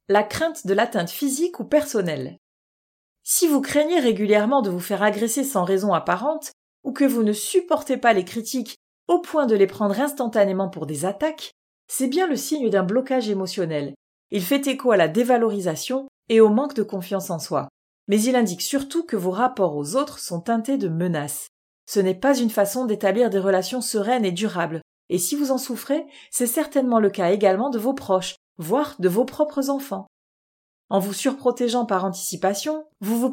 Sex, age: female, 30-49